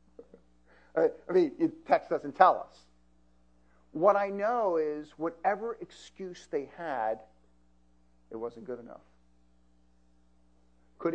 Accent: American